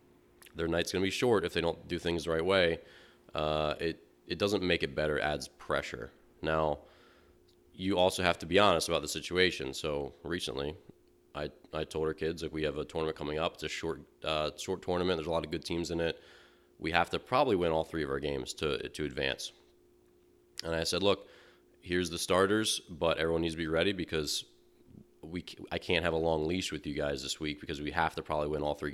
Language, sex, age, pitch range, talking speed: English, male, 30-49, 75-85 Hz, 225 wpm